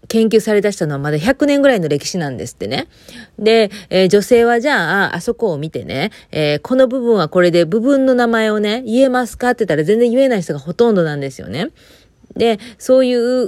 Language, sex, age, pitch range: Japanese, female, 30-49, 155-230 Hz